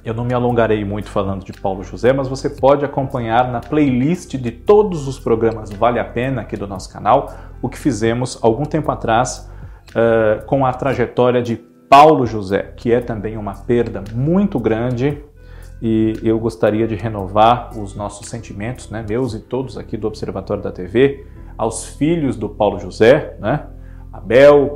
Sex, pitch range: male, 100-130 Hz